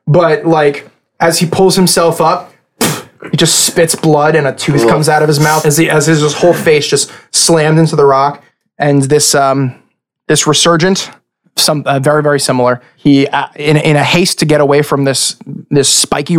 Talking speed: 200 wpm